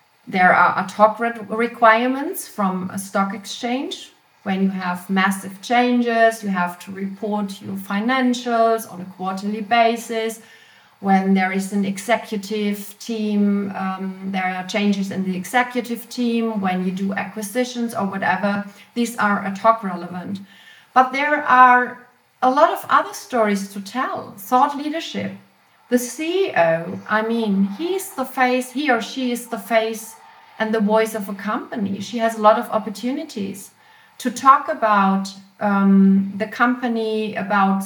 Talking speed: 145 wpm